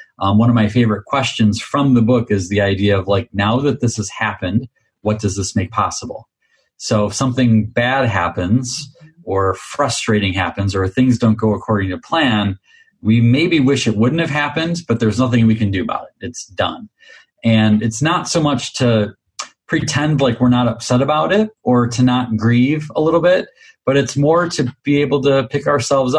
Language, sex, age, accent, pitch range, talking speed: English, male, 30-49, American, 105-130 Hz, 195 wpm